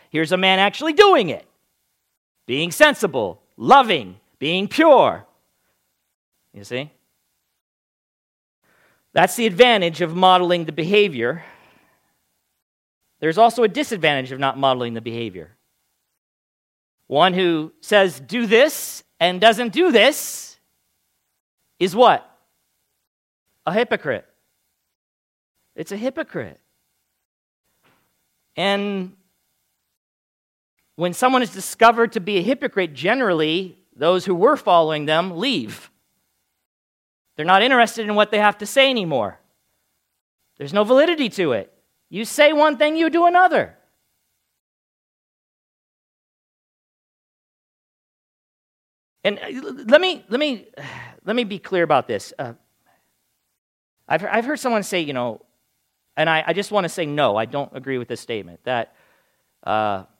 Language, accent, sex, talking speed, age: English, American, male, 120 wpm, 40-59